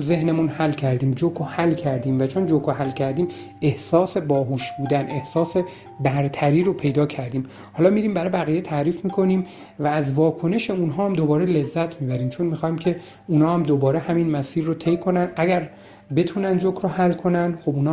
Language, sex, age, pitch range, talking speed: Persian, male, 40-59, 135-175 Hz, 175 wpm